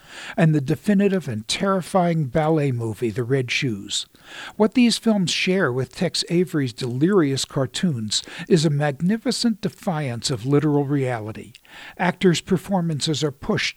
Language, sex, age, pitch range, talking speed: English, male, 60-79, 145-190 Hz, 130 wpm